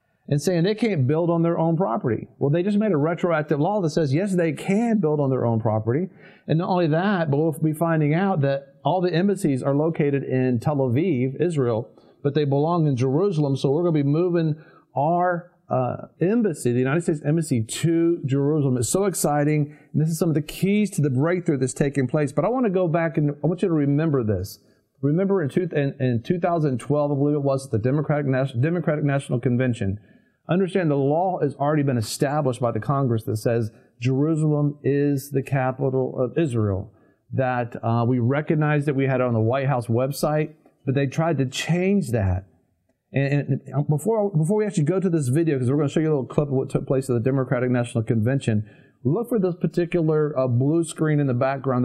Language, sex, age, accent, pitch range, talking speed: English, male, 40-59, American, 130-165 Hz, 210 wpm